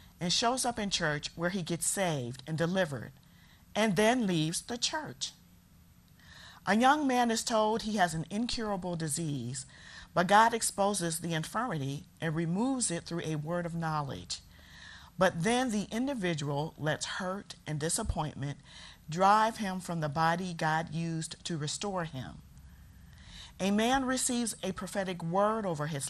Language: English